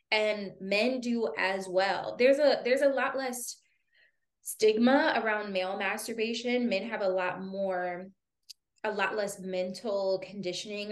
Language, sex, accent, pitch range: English, female, American, 185-230 Hz